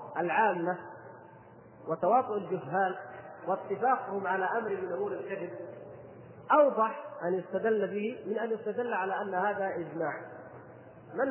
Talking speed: 110 wpm